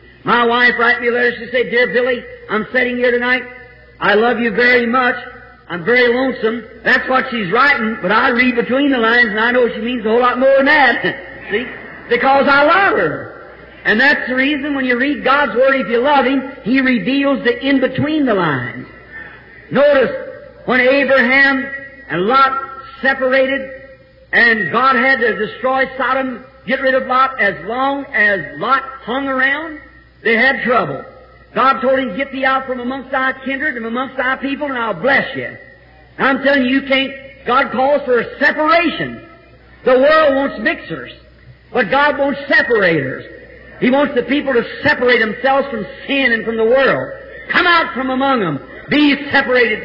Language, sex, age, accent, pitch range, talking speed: English, male, 50-69, American, 245-270 Hz, 180 wpm